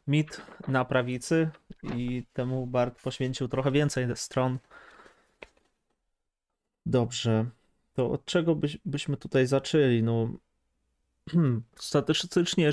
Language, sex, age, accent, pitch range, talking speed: Polish, male, 20-39, native, 120-140 Hz, 85 wpm